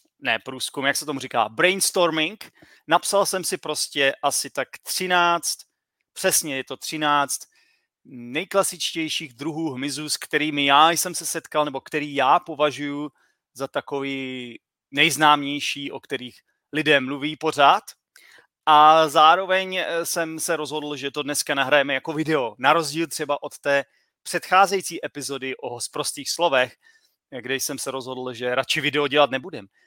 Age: 30-49